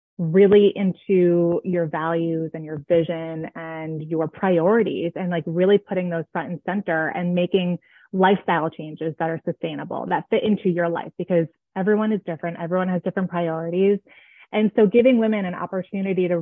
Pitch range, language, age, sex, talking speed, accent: 170-210 Hz, English, 20-39, female, 165 wpm, American